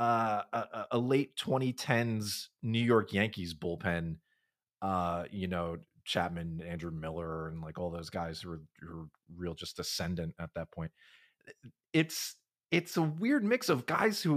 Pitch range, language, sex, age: 95-150 Hz, English, male, 30-49